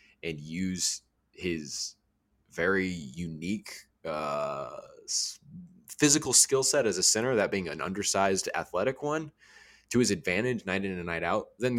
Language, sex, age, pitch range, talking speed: English, male, 20-39, 85-115 Hz, 135 wpm